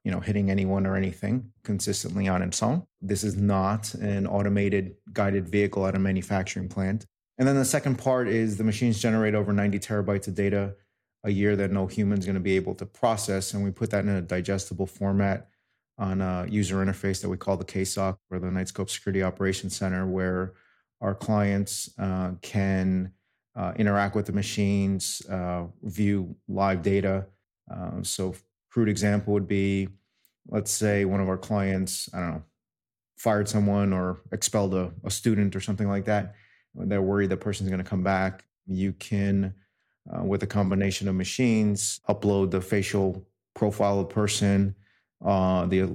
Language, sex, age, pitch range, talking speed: English, male, 30-49, 95-105 Hz, 175 wpm